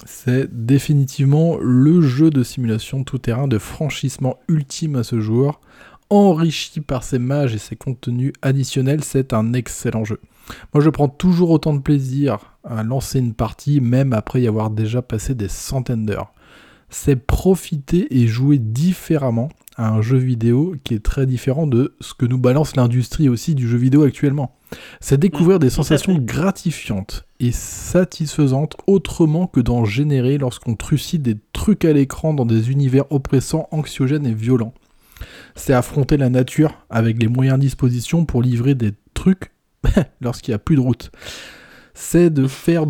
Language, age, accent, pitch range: French, 20-39, French, 120-150 Hz